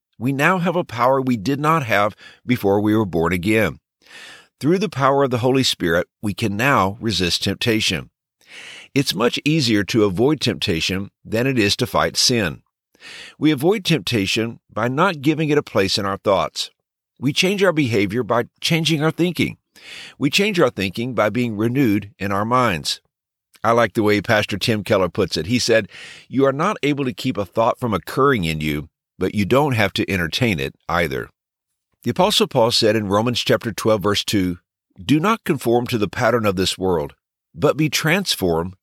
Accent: American